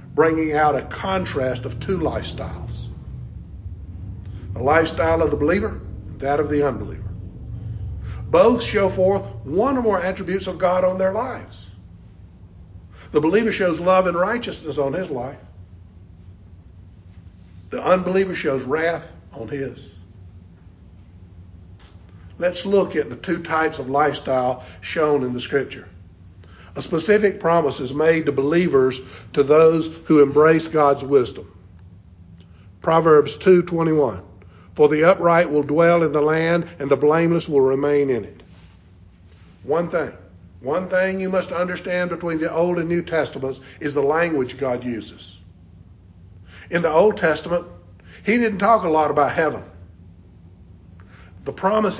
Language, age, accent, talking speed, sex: English, 50-69, American, 135 wpm, male